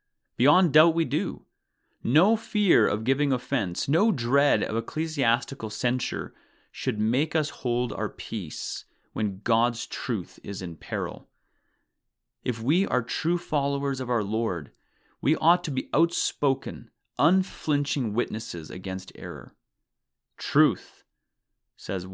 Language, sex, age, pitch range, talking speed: English, male, 30-49, 115-145 Hz, 120 wpm